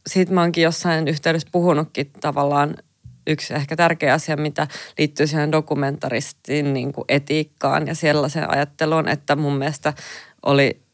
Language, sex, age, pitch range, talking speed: Finnish, female, 20-39, 140-160 Hz, 135 wpm